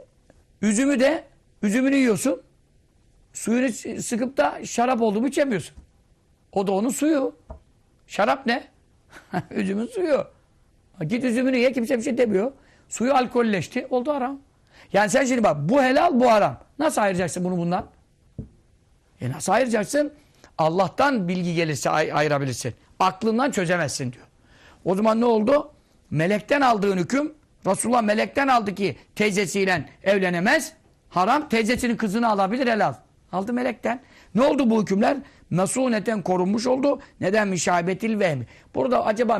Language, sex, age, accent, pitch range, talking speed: Turkish, male, 60-79, native, 185-250 Hz, 130 wpm